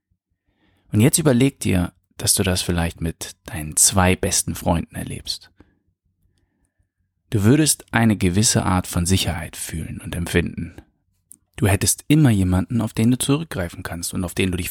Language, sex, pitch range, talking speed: German, male, 90-105 Hz, 155 wpm